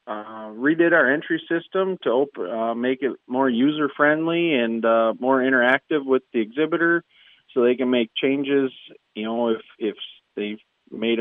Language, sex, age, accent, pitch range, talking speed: English, male, 40-59, American, 110-135 Hz, 165 wpm